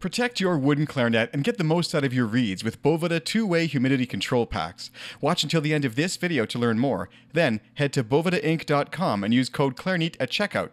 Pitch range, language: 125-165 Hz, English